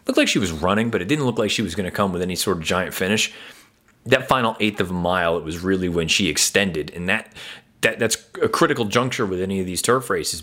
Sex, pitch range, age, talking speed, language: male, 95-115 Hz, 30-49, 265 wpm, English